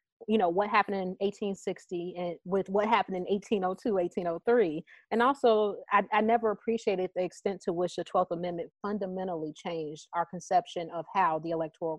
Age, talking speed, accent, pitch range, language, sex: 30-49, 170 wpm, American, 175-210 Hz, English, female